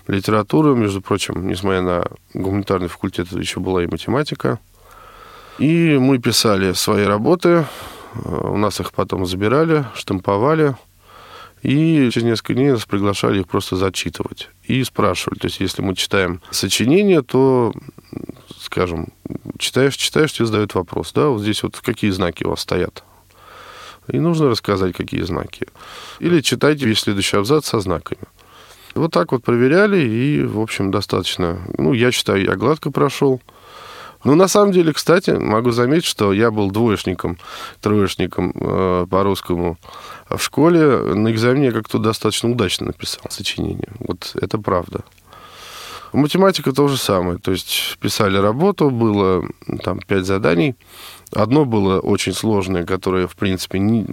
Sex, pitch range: male, 95-135 Hz